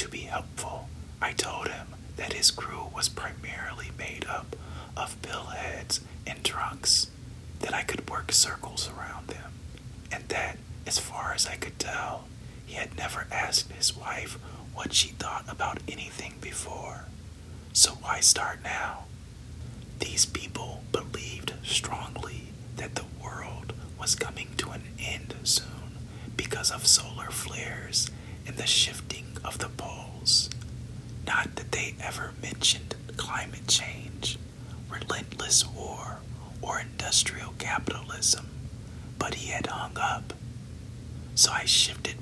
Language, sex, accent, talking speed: English, male, American, 130 wpm